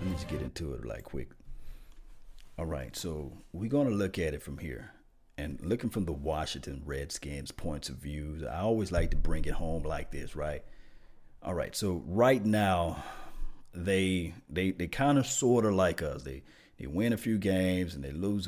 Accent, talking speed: American, 200 wpm